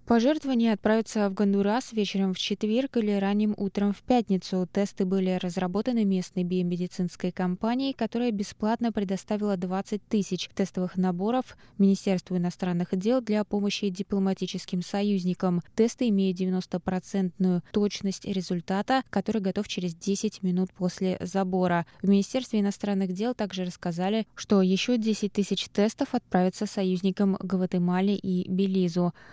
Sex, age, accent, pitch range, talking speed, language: female, 20-39, native, 180-205 Hz, 125 wpm, Russian